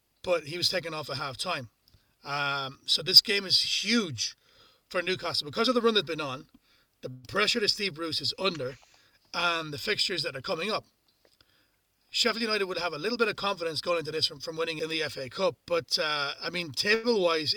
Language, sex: English, male